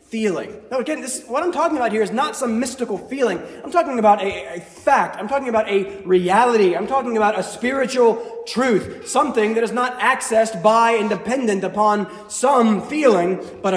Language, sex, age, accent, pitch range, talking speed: English, male, 30-49, American, 185-225 Hz, 185 wpm